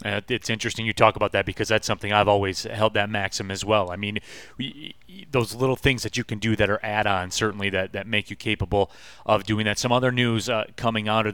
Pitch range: 105-120 Hz